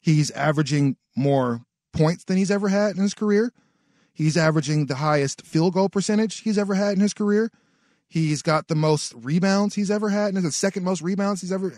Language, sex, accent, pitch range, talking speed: English, male, American, 140-180 Hz, 205 wpm